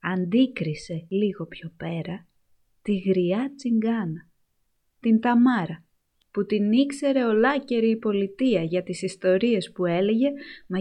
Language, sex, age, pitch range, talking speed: Greek, female, 20-39, 175-225 Hz, 115 wpm